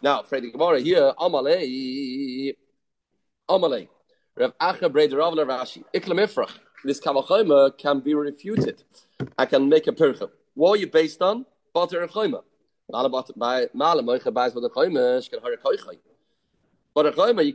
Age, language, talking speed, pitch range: 30-49, English, 125 wpm, 140-200 Hz